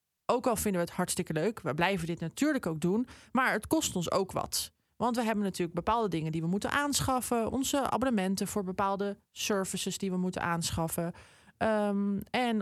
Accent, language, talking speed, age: Dutch, Dutch, 185 wpm, 20-39